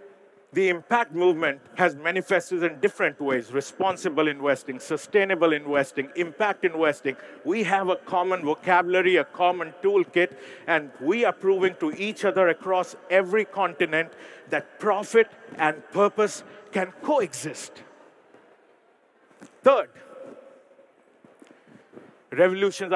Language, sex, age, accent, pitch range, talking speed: English, male, 50-69, Indian, 175-210 Hz, 105 wpm